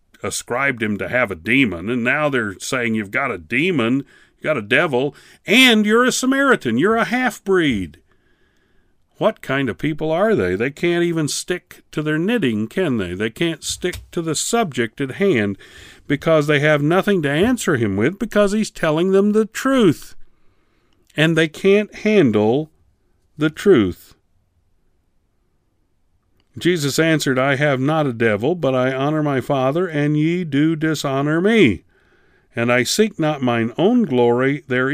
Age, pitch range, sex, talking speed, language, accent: 50-69, 105-160 Hz, male, 160 wpm, English, American